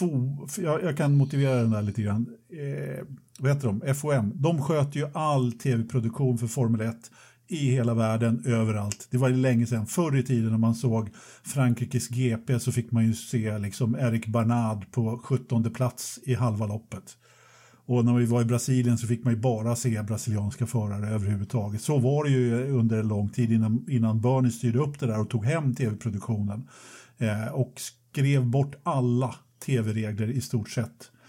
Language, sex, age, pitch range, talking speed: Swedish, male, 50-69, 115-140 Hz, 175 wpm